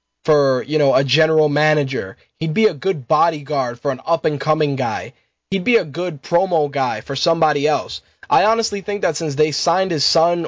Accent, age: American, 20-39